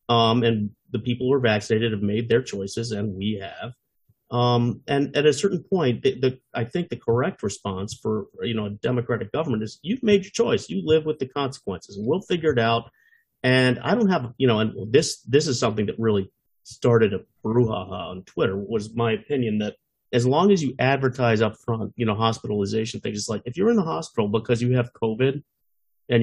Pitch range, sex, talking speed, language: 110-140 Hz, male, 215 wpm, English